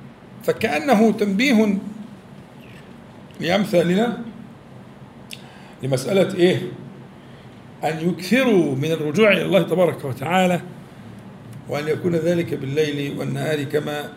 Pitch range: 155-215 Hz